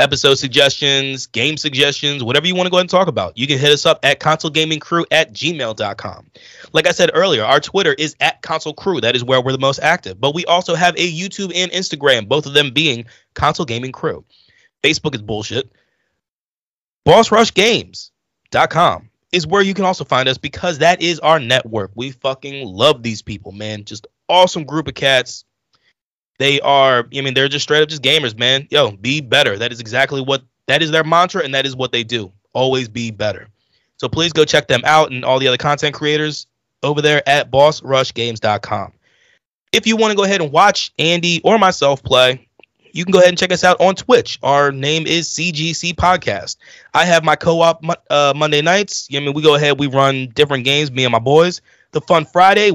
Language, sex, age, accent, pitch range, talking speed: English, male, 20-39, American, 130-170 Hz, 200 wpm